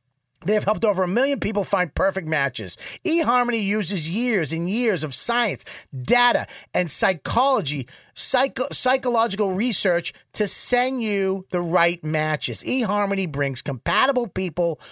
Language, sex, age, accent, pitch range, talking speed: English, male, 30-49, American, 160-235 Hz, 130 wpm